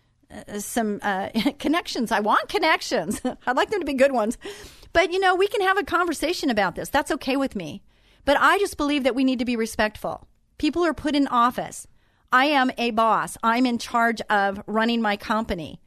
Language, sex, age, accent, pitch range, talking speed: English, female, 40-59, American, 220-310 Hz, 200 wpm